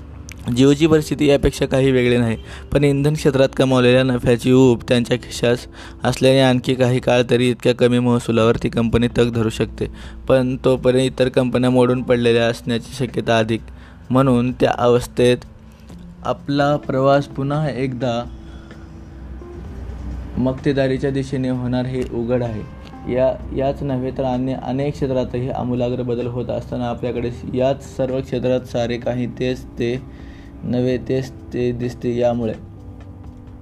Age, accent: 20-39, native